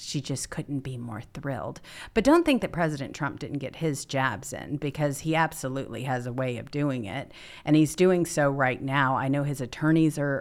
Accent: American